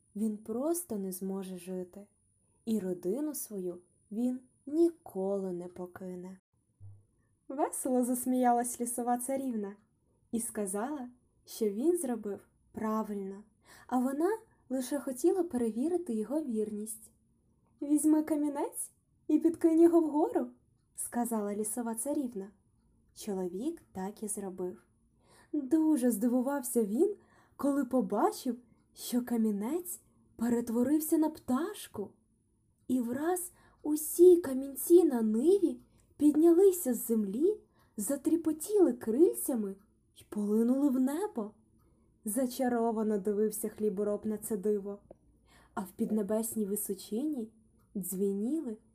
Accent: native